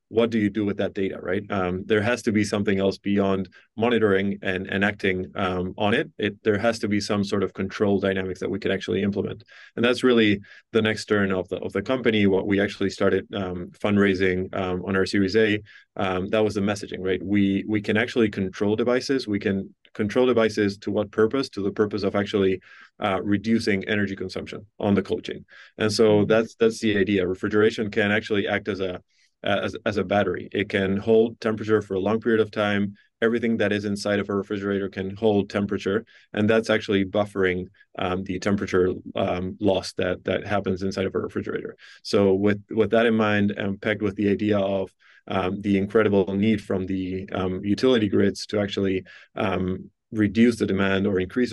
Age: 30-49